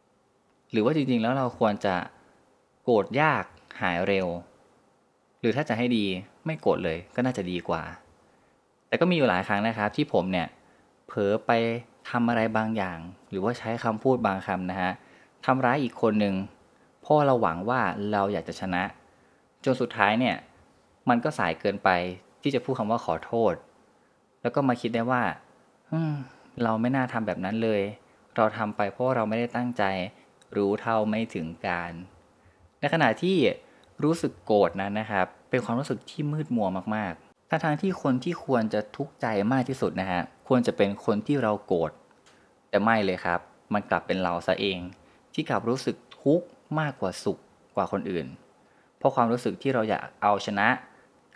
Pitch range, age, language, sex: 95-130 Hz, 20-39, Thai, male